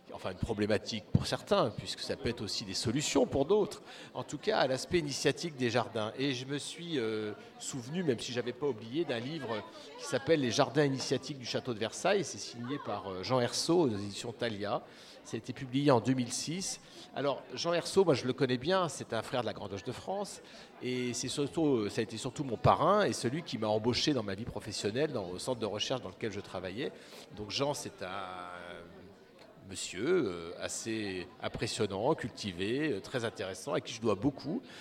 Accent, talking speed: French, 200 wpm